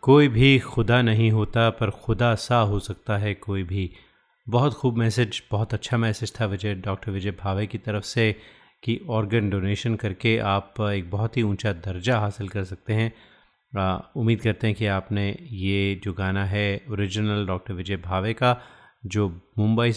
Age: 30-49